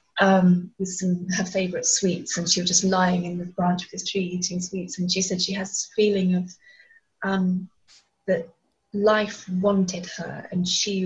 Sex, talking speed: female, 185 wpm